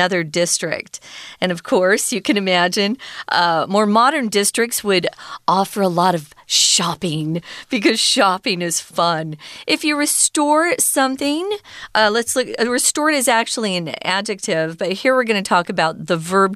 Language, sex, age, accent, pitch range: Chinese, female, 40-59, American, 175-245 Hz